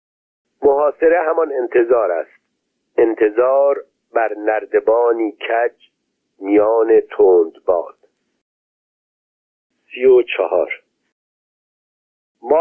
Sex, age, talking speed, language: male, 50-69, 70 wpm, Persian